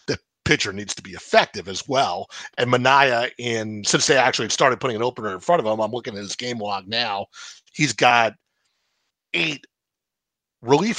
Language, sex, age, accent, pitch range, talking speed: English, male, 50-69, American, 110-150 Hz, 175 wpm